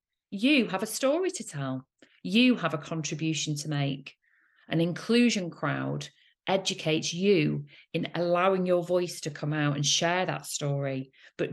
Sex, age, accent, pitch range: female, 40-59, British, 145-185 Hz